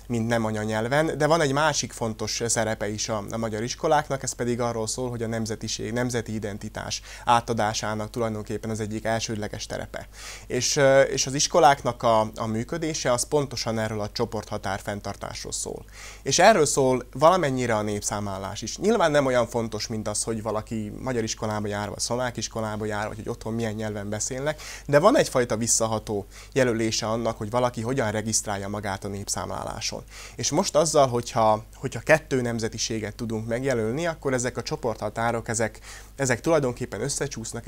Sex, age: male, 20-39